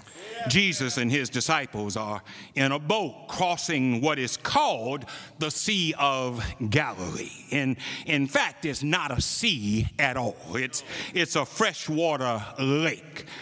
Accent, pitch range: American, 135-195 Hz